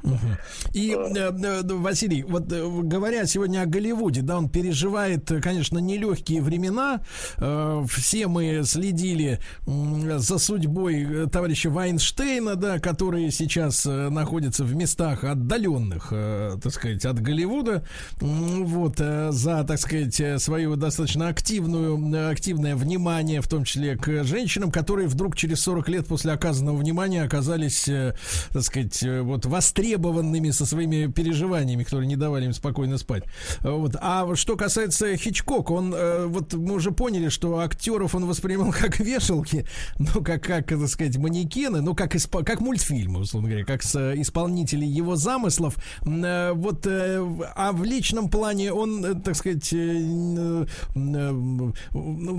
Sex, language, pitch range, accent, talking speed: male, Russian, 145-185 Hz, native, 120 wpm